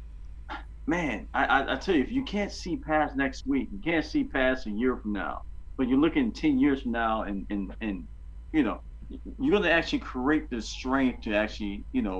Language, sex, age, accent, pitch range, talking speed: English, male, 40-59, American, 100-145 Hz, 205 wpm